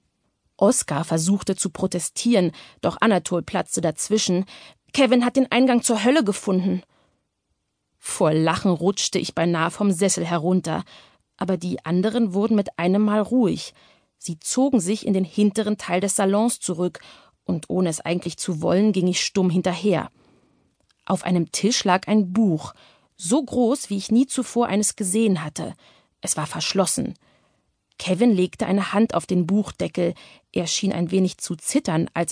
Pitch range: 175-215 Hz